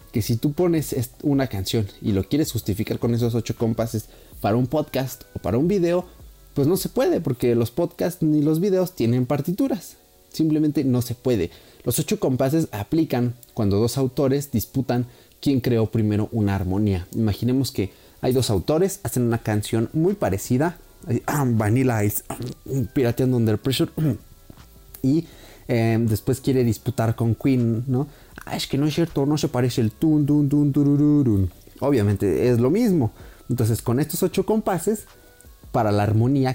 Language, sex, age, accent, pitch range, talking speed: Spanish, male, 30-49, Mexican, 110-145 Hz, 165 wpm